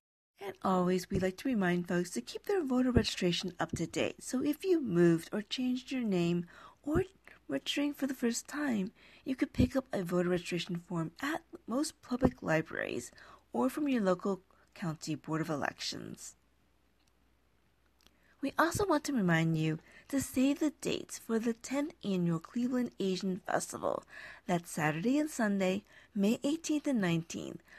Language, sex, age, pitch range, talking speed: English, female, 40-59, 175-265 Hz, 160 wpm